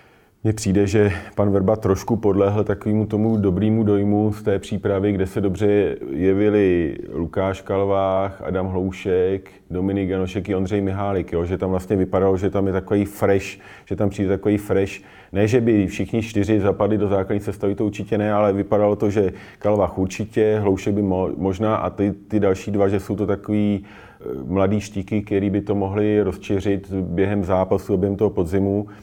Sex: male